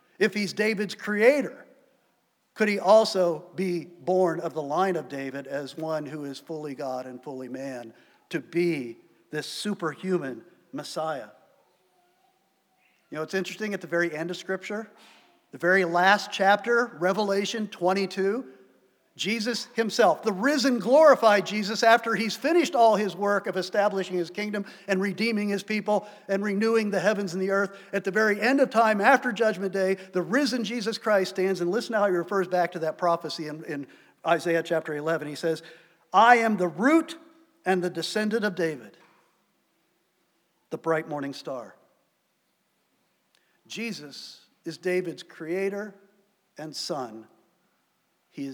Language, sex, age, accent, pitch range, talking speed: English, male, 50-69, American, 165-215 Hz, 150 wpm